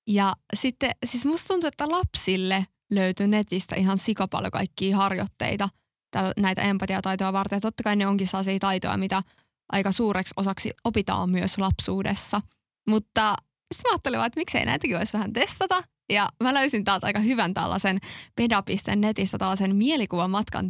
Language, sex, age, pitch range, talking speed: Finnish, female, 20-39, 190-215 Hz, 155 wpm